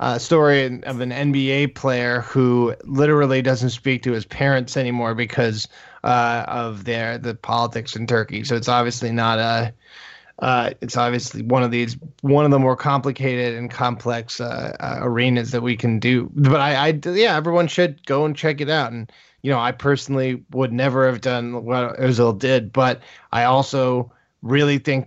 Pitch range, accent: 125-145 Hz, American